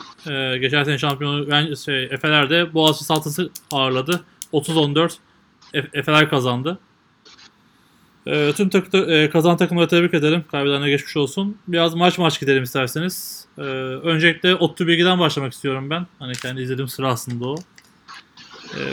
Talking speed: 125 wpm